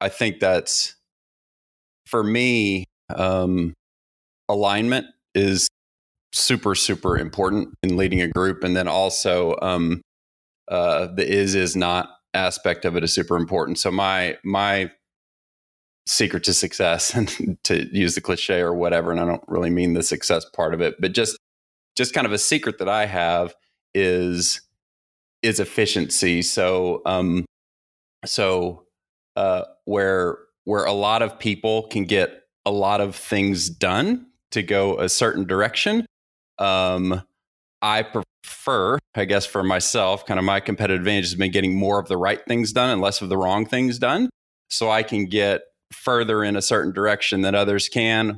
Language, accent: English, American